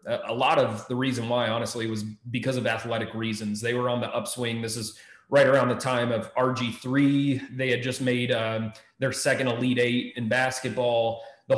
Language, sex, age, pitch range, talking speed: English, male, 30-49, 115-140 Hz, 190 wpm